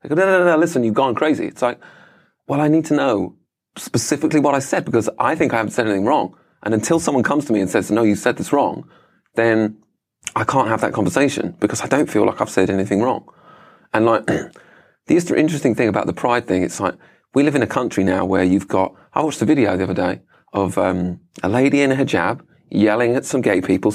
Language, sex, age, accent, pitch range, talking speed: English, male, 30-49, British, 115-170 Hz, 240 wpm